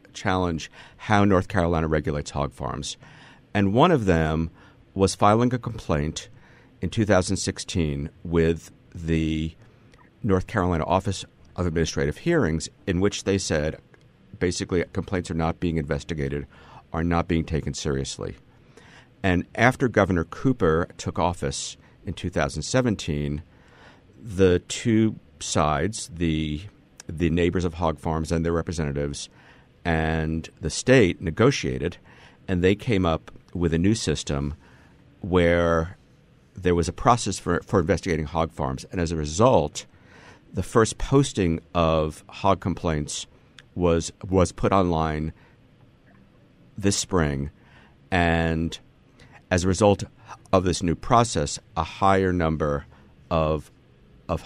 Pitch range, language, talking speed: 80-100 Hz, English, 120 wpm